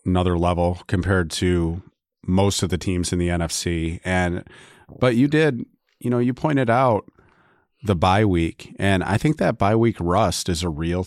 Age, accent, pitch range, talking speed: 30-49, American, 95-115 Hz, 180 wpm